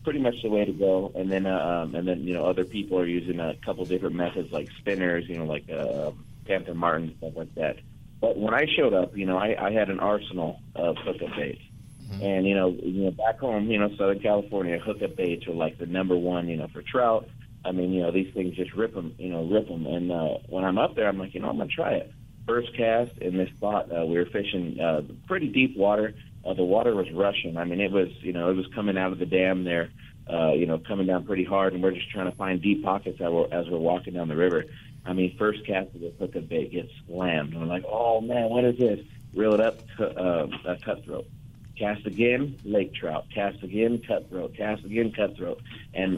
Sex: male